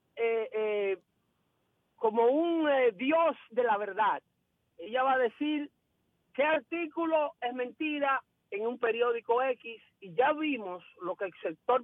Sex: male